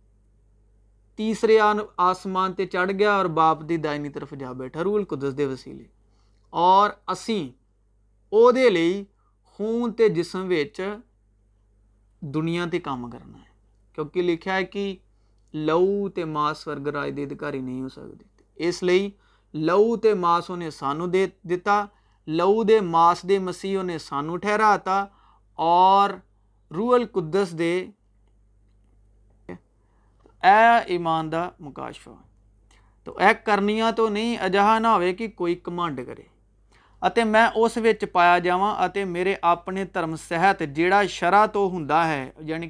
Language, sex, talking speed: Urdu, male, 120 wpm